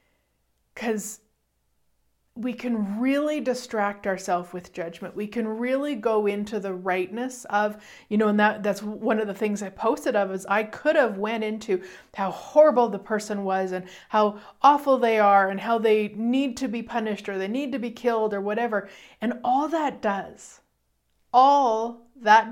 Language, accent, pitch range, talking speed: English, American, 200-250 Hz, 175 wpm